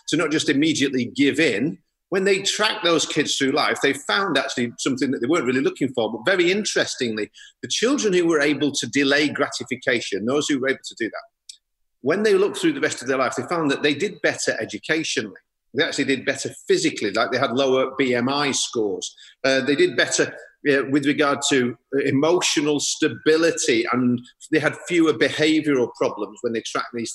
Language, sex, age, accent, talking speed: English, male, 40-59, British, 195 wpm